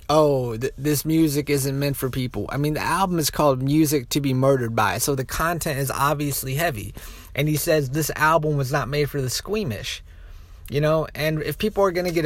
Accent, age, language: American, 20-39, English